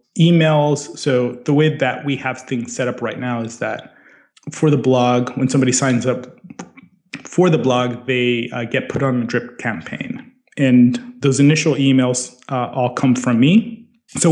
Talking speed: 175 wpm